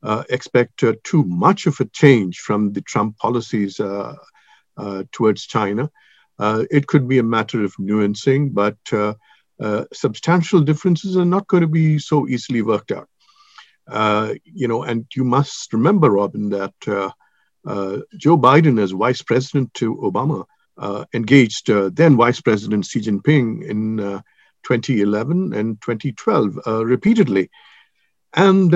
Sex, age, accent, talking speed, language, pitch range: male, 50-69, Indian, 150 wpm, English, 105-150 Hz